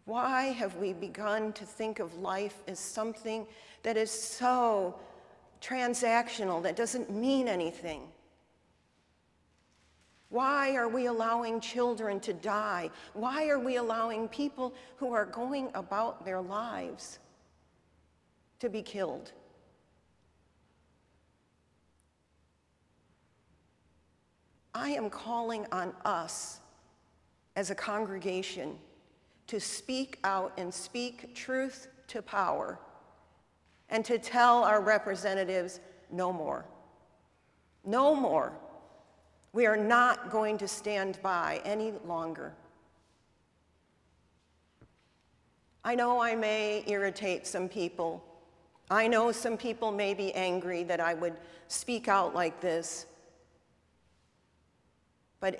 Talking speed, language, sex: 105 wpm, English, female